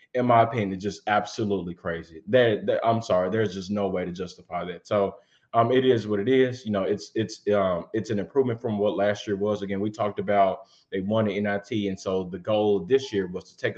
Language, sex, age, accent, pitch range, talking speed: English, male, 20-39, American, 95-115 Hz, 235 wpm